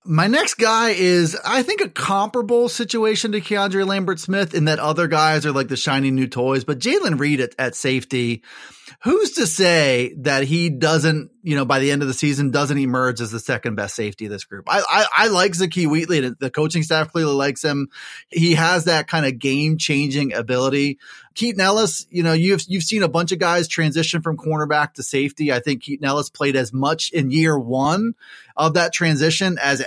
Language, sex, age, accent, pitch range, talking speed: English, male, 30-49, American, 140-180 Hz, 205 wpm